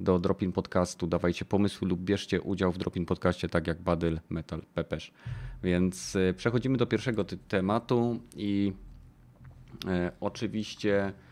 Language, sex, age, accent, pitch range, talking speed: Polish, male, 30-49, native, 95-120 Hz, 125 wpm